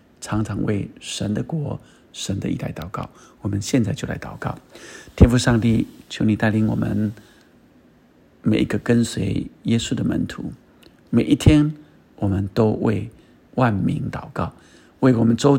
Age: 50-69